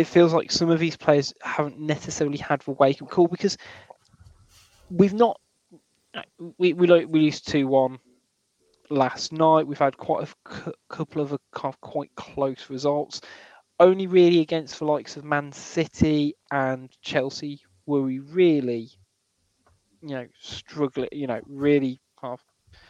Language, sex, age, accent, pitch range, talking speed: English, male, 20-39, British, 130-155 Hz, 150 wpm